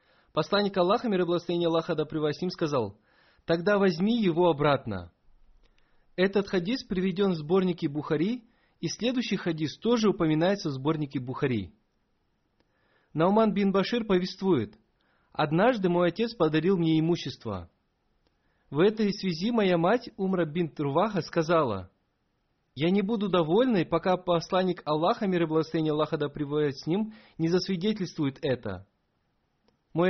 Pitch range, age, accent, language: 150-195 Hz, 30-49, native, Russian